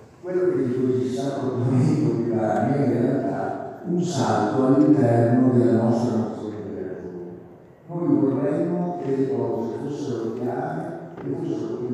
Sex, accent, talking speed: male, native, 140 wpm